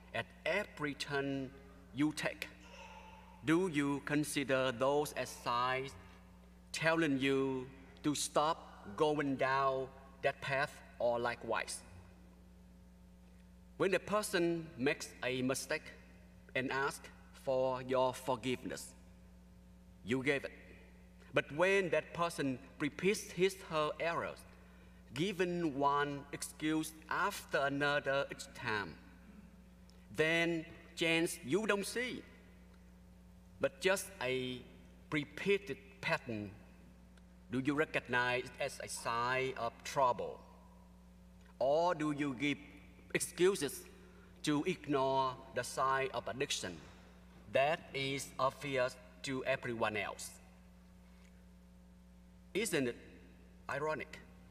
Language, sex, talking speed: English, male, 100 wpm